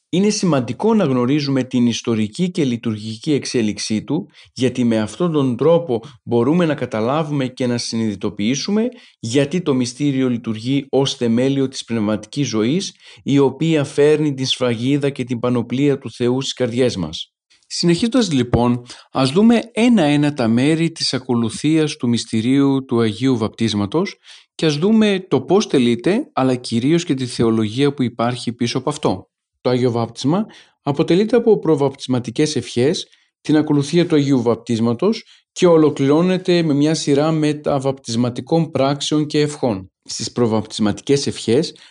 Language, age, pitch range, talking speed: Greek, 40-59, 120-150 Hz, 140 wpm